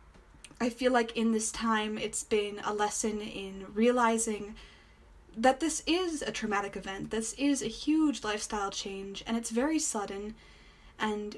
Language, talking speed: English, 155 wpm